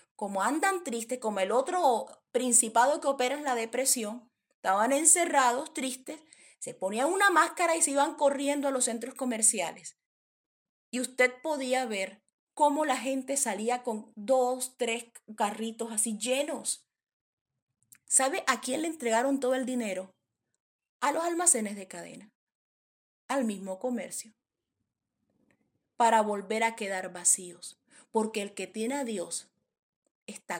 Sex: female